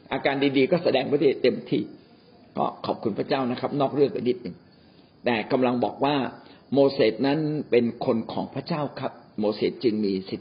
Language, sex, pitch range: Thai, male, 120-165 Hz